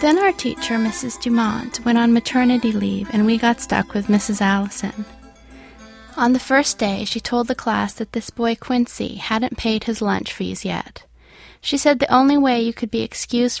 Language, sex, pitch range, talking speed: English, female, 195-240 Hz, 190 wpm